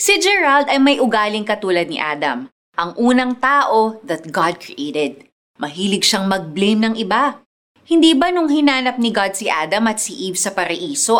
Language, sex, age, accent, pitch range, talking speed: Filipino, female, 20-39, native, 190-285 Hz, 170 wpm